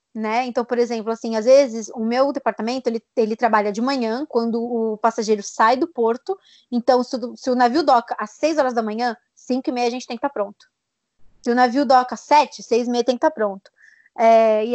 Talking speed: 225 wpm